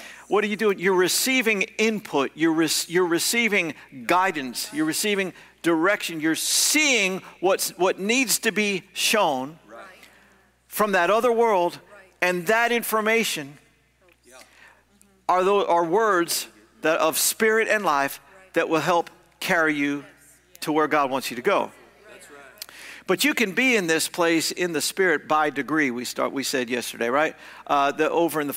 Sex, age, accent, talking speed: male, 50-69, American, 155 wpm